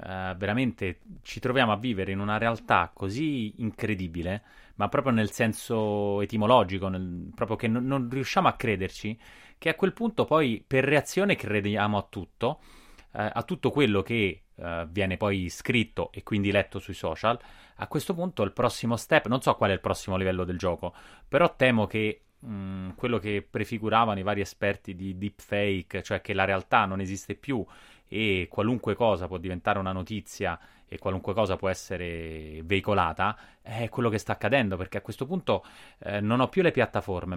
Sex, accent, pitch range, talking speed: male, native, 95-125 Hz, 170 wpm